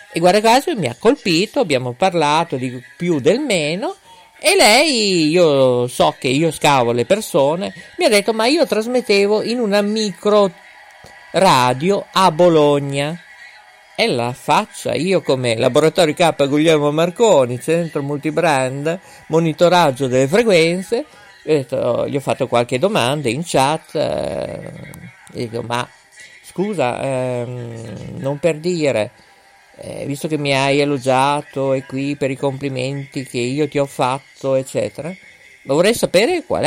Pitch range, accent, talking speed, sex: 135-185 Hz, native, 135 wpm, male